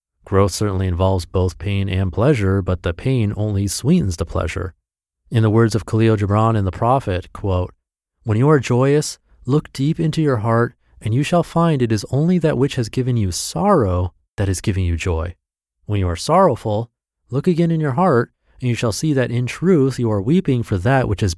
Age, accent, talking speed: 30-49, American, 210 wpm